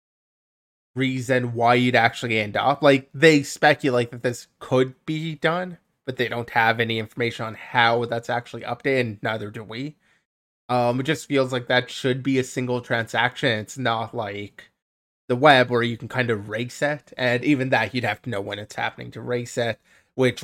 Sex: male